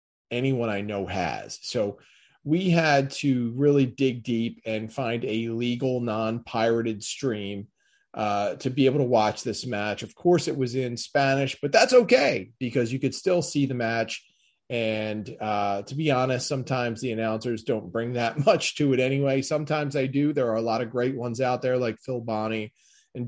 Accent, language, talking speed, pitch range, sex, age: American, English, 185 wpm, 110-140 Hz, male, 30-49